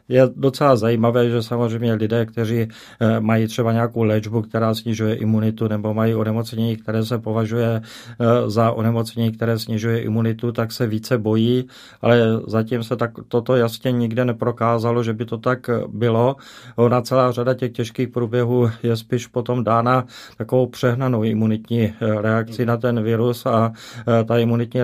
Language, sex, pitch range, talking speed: Czech, male, 115-120 Hz, 150 wpm